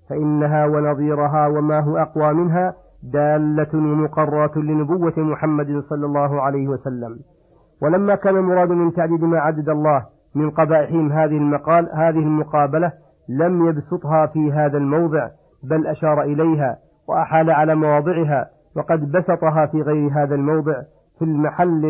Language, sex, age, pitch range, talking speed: Arabic, male, 50-69, 150-170 Hz, 130 wpm